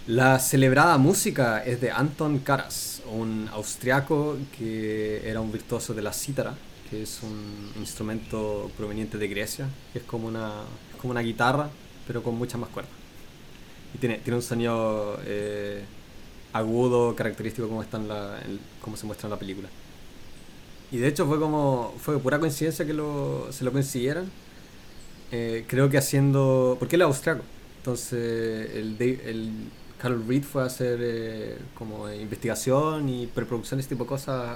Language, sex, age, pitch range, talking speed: Spanish, male, 20-39, 110-140 Hz, 160 wpm